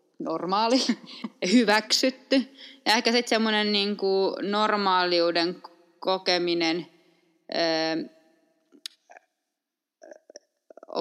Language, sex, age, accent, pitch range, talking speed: Finnish, female, 20-39, native, 175-230 Hz, 55 wpm